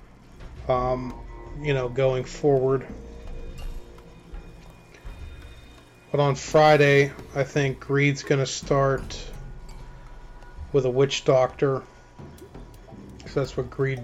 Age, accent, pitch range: 30-49, American, 90-135 Hz